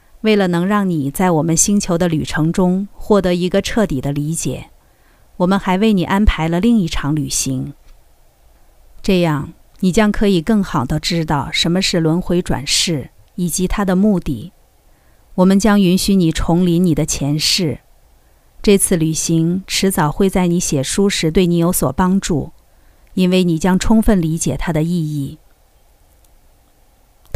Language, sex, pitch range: Chinese, female, 160-200 Hz